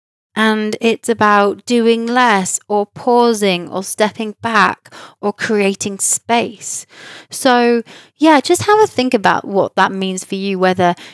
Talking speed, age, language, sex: 140 wpm, 20-39, English, female